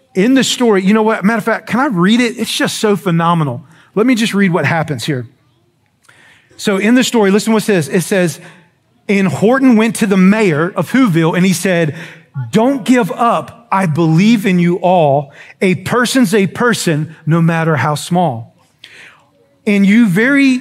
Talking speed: 190 wpm